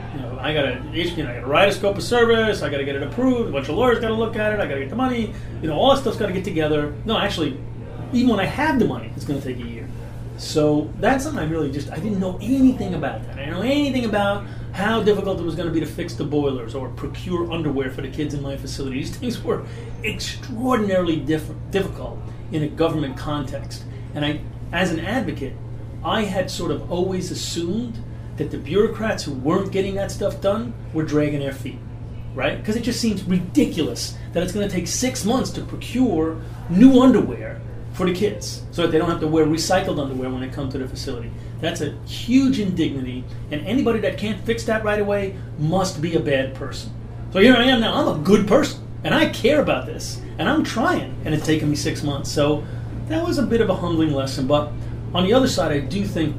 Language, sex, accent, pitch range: English, male, American, 120-190 Hz